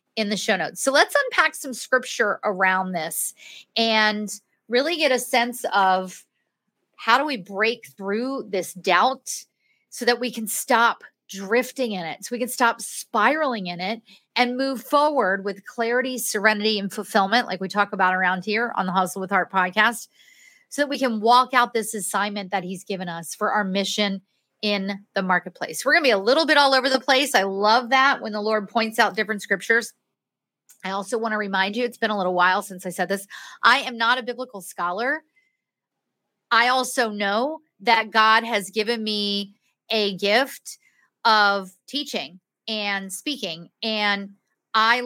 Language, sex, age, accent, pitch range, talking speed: English, female, 30-49, American, 195-245 Hz, 180 wpm